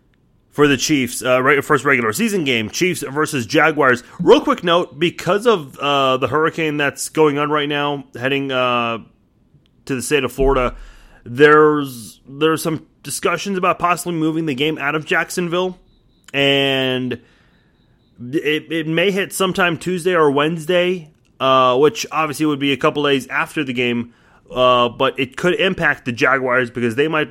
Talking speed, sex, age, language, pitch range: 165 wpm, male, 30-49, English, 125-160 Hz